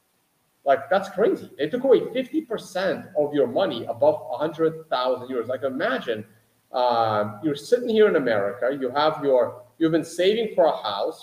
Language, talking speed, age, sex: English, 160 wpm, 30-49, male